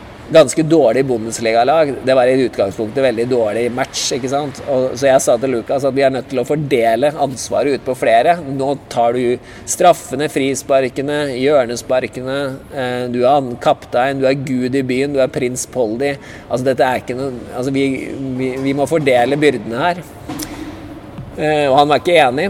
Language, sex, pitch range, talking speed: English, male, 115-140 Hz, 175 wpm